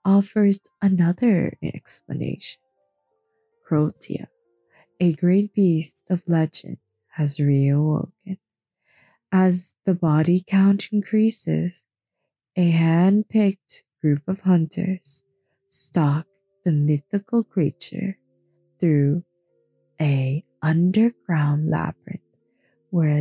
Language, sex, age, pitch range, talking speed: English, female, 20-39, 150-200 Hz, 80 wpm